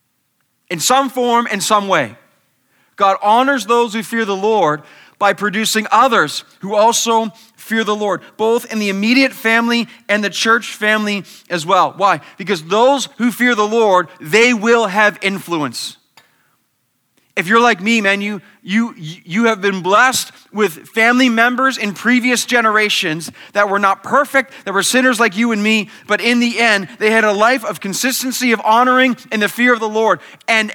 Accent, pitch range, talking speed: American, 210-265 Hz, 175 wpm